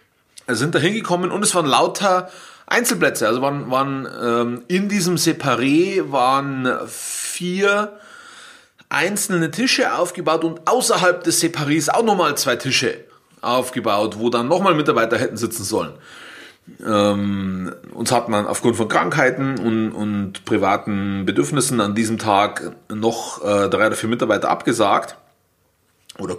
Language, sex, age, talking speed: German, male, 30-49, 130 wpm